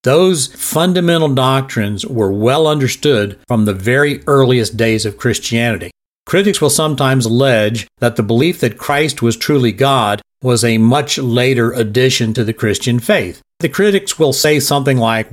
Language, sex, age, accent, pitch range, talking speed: English, male, 50-69, American, 115-145 Hz, 155 wpm